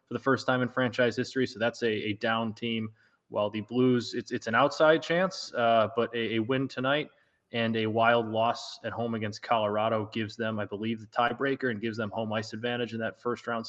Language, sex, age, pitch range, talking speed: English, male, 20-39, 110-120 Hz, 225 wpm